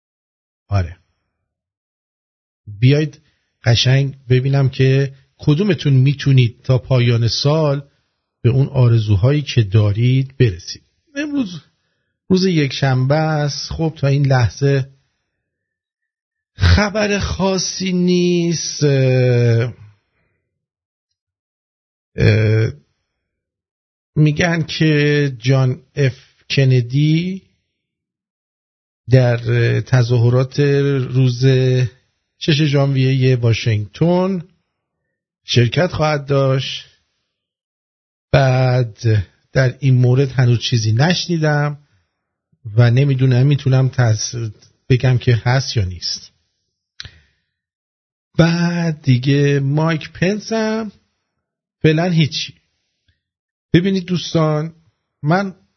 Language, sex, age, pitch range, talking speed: English, male, 50-69, 120-150 Hz, 70 wpm